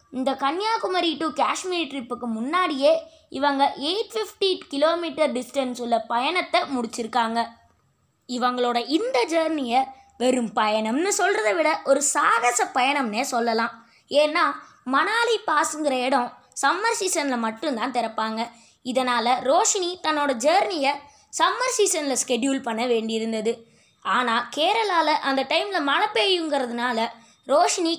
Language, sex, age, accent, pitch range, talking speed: Tamil, female, 20-39, native, 245-335 Hz, 105 wpm